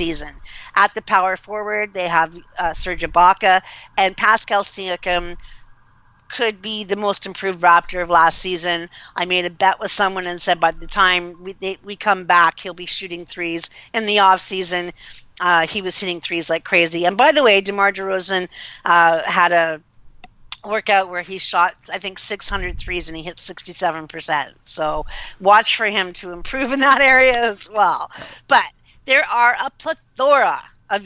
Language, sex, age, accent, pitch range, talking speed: English, female, 50-69, American, 170-200 Hz, 175 wpm